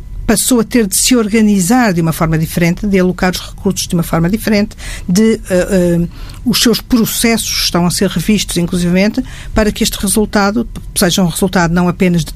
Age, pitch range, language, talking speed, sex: 50-69, 170-200 Hz, Portuguese, 190 wpm, female